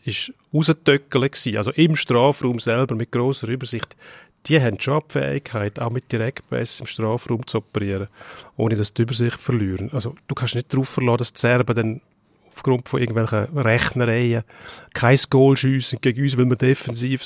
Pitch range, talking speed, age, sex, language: 115-135 Hz, 155 wpm, 40-59, male, German